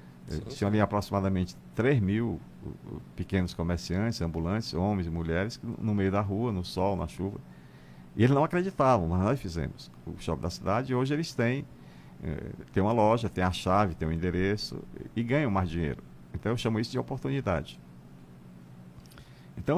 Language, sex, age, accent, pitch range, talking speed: Portuguese, male, 50-69, Brazilian, 75-115 Hz, 170 wpm